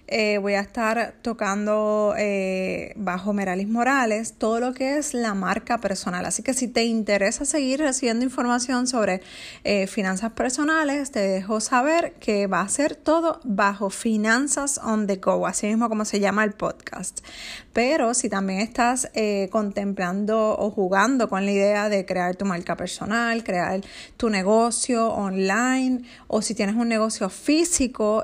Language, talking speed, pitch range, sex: Spanish, 155 wpm, 205-250 Hz, female